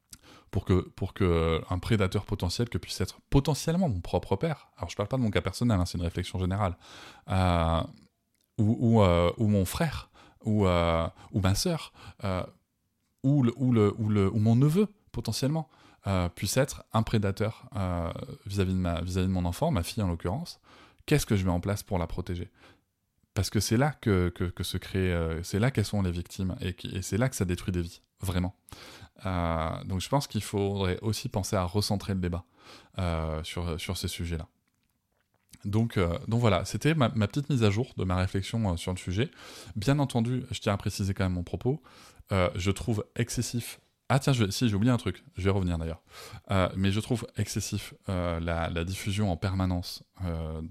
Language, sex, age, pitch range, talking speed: French, male, 20-39, 90-110 Hz, 210 wpm